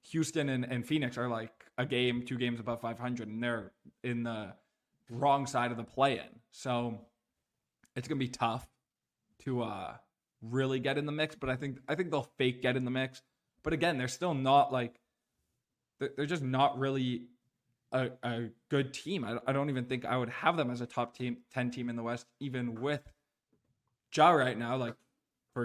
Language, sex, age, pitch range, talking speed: English, male, 20-39, 120-135 Hz, 195 wpm